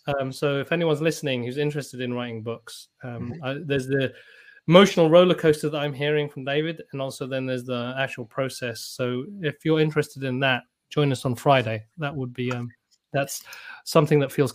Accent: British